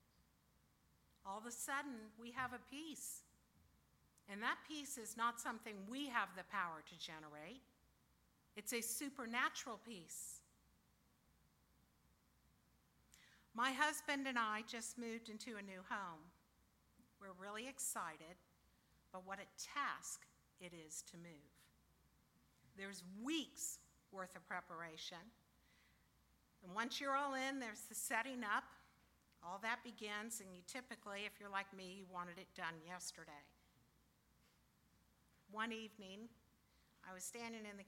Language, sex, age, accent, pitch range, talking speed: English, female, 50-69, American, 180-255 Hz, 130 wpm